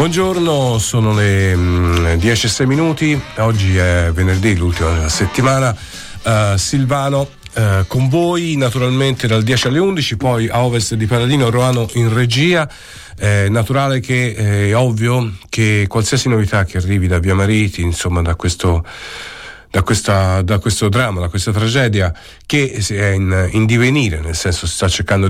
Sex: male